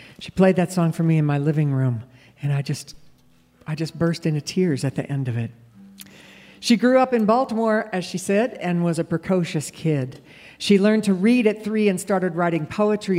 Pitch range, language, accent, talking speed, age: 150-210 Hz, English, American, 210 wpm, 60-79